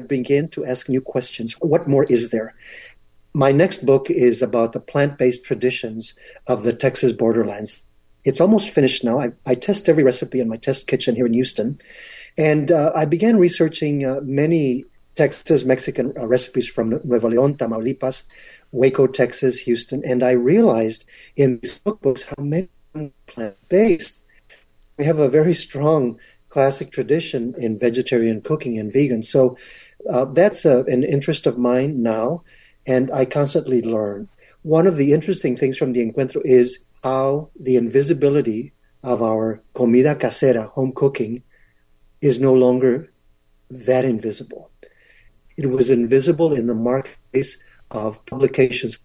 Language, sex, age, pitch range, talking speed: English, male, 50-69, 120-145 Hz, 150 wpm